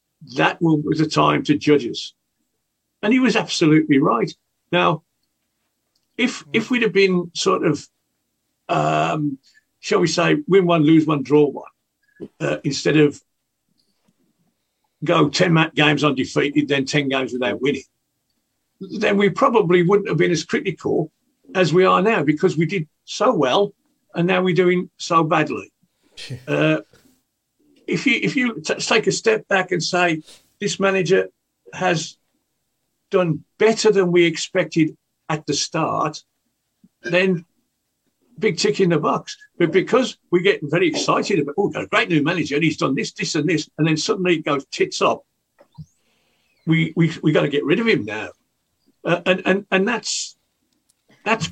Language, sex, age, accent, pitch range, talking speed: English, male, 50-69, British, 150-195 Hz, 160 wpm